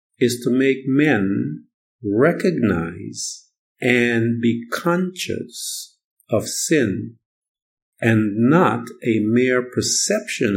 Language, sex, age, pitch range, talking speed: English, male, 50-69, 105-150 Hz, 85 wpm